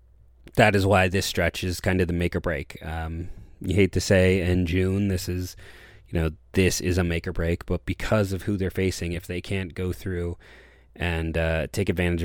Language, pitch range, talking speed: English, 85-110 Hz, 215 wpm